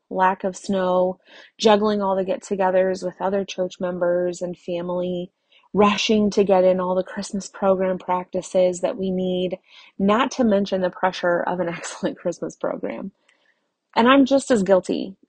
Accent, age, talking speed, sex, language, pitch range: American, 30-49, 155 wpm, female, English, 180-210 Hz